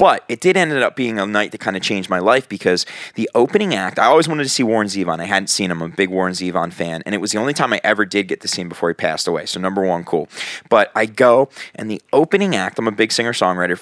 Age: 20-39